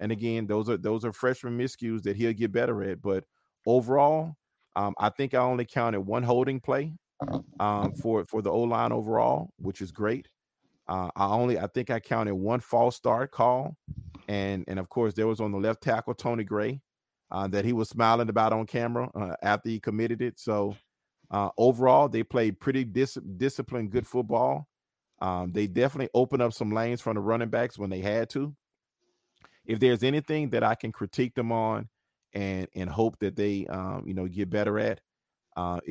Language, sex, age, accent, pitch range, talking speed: English, male, 30-49, American, 95-120 Hz, 195 wpm